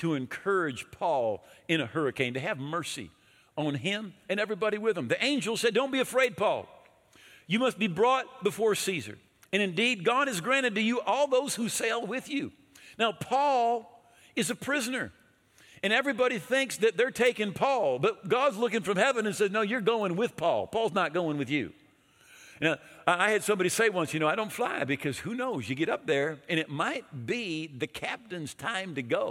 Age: 50-69